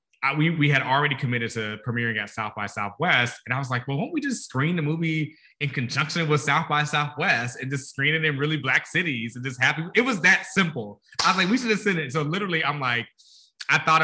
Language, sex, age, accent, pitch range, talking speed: English, male, 20-39, American, 120-160 Hz, 250 wpm